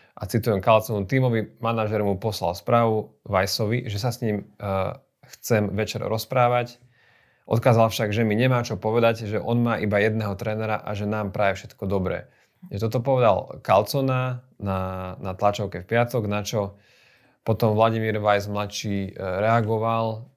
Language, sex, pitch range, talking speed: Slovak, male, 100-115 Hz, 145 wpm